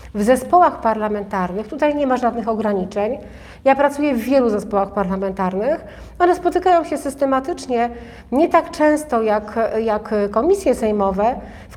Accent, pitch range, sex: native, 225-275 Hz, female